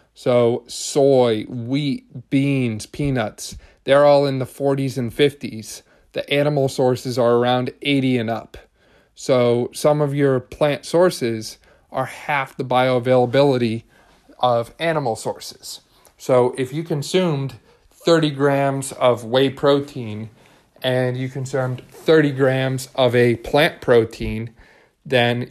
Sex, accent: male, American